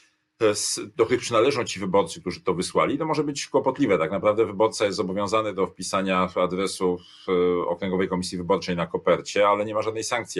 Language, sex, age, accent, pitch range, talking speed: Polish, male, 40-59, native, 90-100 Hz, 175 wpm